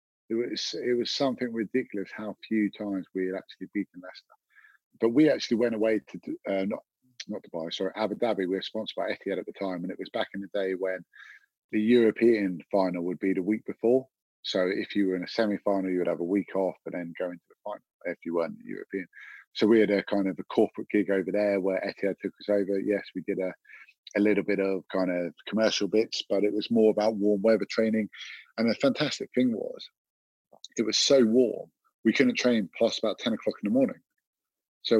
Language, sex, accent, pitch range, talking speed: English, male, British, 95-120 Hz, 225 wpm